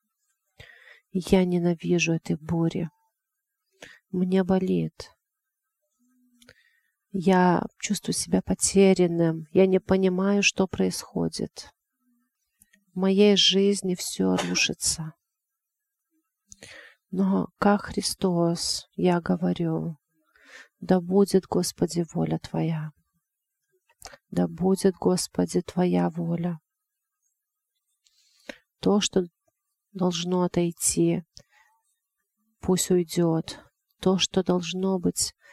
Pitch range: 170-225 Hz